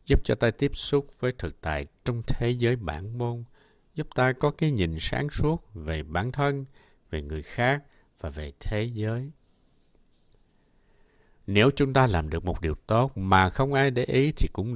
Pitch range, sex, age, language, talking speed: 85-130 Hz, male, 60-79, Vietnamese, 185 wpm